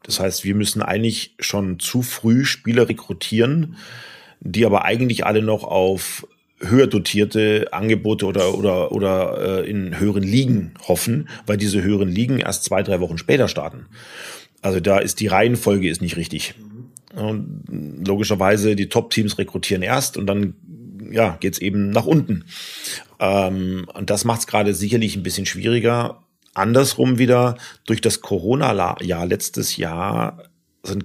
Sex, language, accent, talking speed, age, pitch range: male, German, German, 150 wpm, 40-59, 95-110 Hz